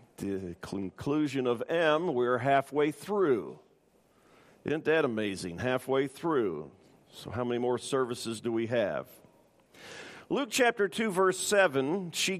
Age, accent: 50-69, American